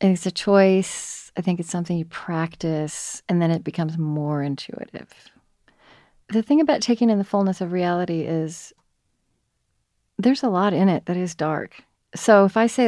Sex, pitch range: female, 160-210 Hz